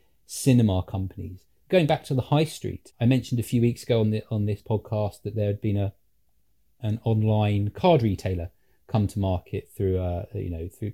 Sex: male